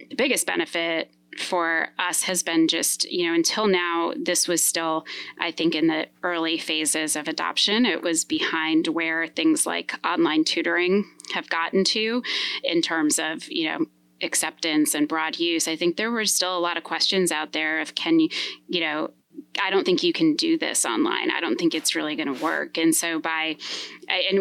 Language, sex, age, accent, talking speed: English, female, 20-39, American, 195 wpm